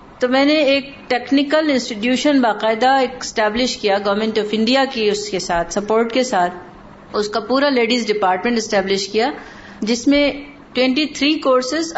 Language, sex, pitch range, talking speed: Urdu, female, 200-255 Hz, 155 wpm